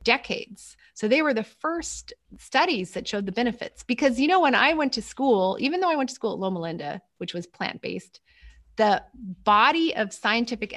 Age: 30-49